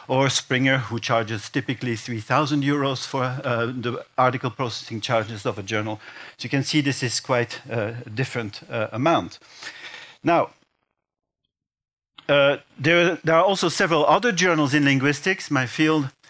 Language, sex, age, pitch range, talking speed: Dutch, male, 50-69, 130-155 Hz, 150 wpm